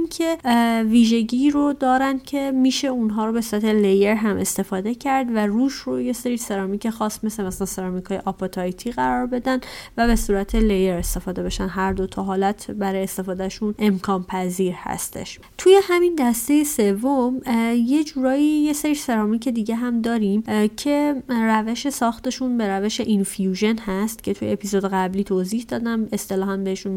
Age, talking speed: 30-49, 155 wpm